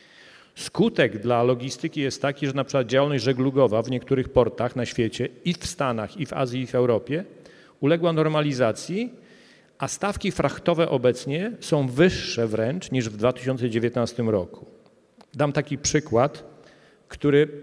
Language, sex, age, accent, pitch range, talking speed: Polish, male, 40-59, native, 125-155 Hz, 135 wpm